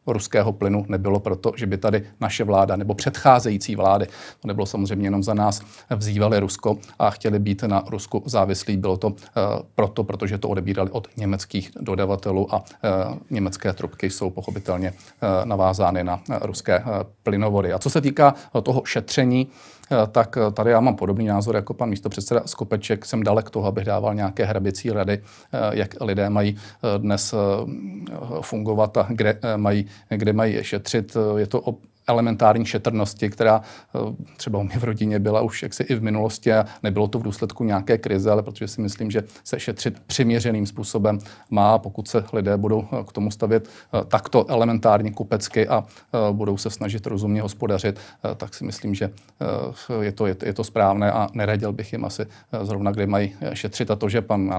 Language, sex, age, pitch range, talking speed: Czech, male, 40-59, 100-110 Hz, 170 wpm